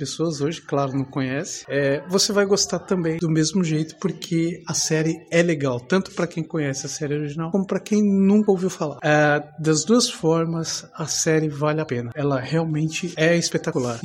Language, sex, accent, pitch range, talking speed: Portuguese, male, Brazilian, 150-185 Hz, 190 wpm